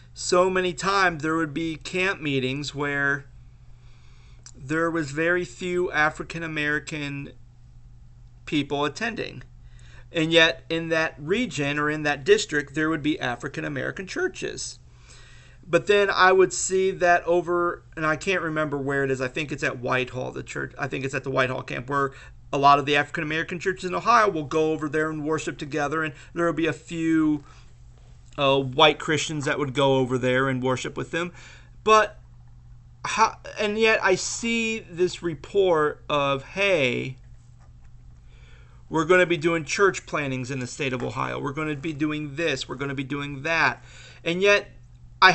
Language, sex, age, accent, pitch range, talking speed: English, male, 40-59, American, 130-170 Hz, 170 wpm